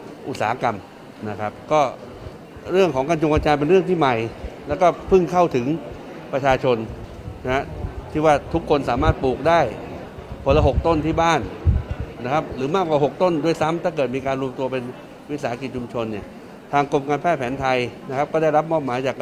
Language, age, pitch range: Thai, 60-79, 130-160 Hz